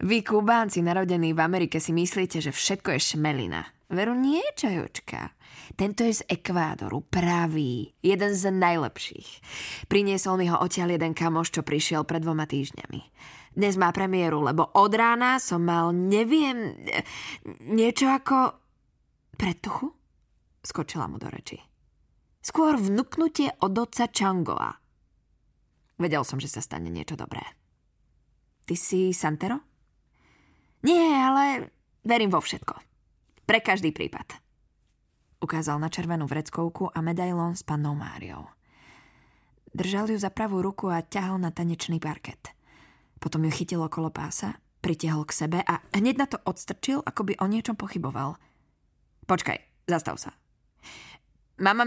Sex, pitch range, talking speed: female, 160-205 Hz, 130 wpm